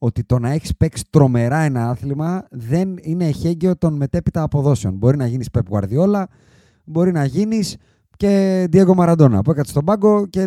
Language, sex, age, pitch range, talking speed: Greek, male, 30-49, 120-175 Hz, 170 wpm